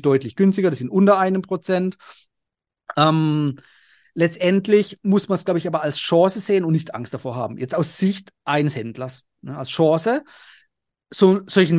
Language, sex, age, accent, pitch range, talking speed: German, male, 30-49, German, 155-195 Hz, 160 wpm